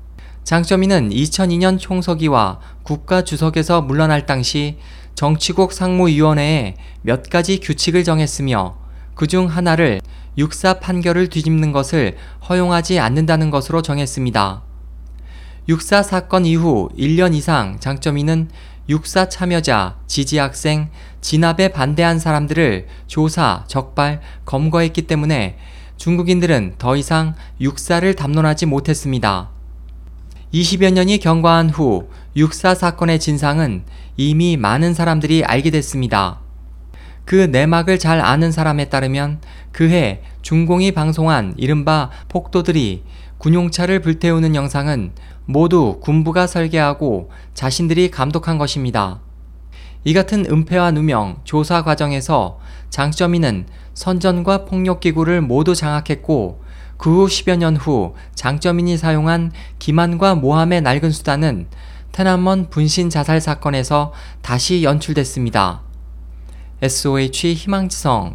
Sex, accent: male, native